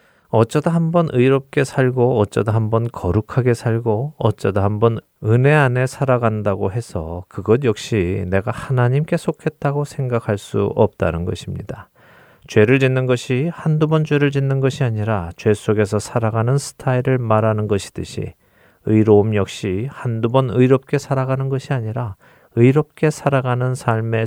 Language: Korean